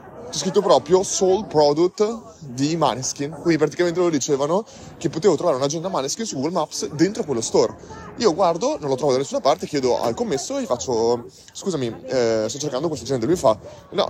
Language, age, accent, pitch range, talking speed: Italian, 30-49, native, 115-155 Hz, 190 wpm